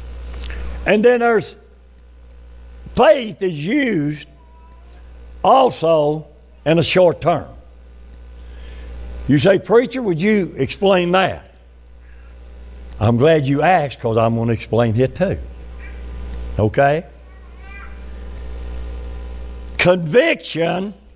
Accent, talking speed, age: American, 90 wpm, 60-79